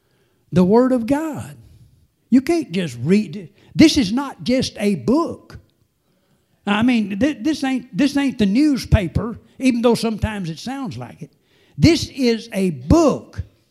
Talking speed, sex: 150 wpm, male